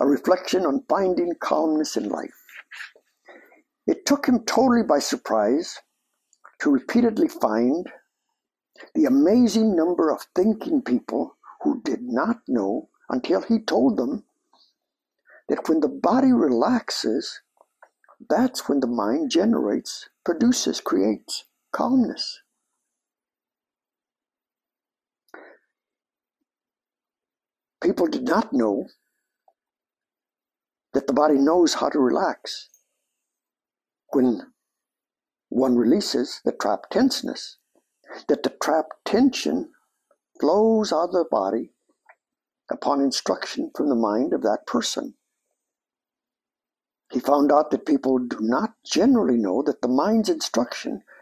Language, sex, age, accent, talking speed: English, male, 60-79, American, 105 wpm